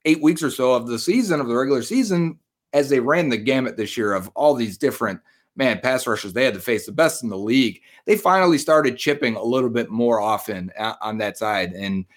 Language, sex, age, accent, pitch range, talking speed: English, male, 30-49, American, 115-145 Hz, 230 wpm